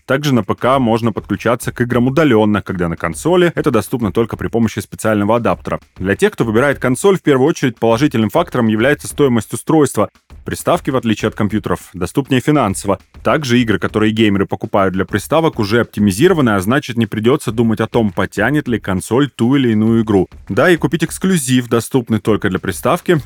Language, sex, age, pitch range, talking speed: Russian, male, 30-49, 95-130 Hz, 180 wpm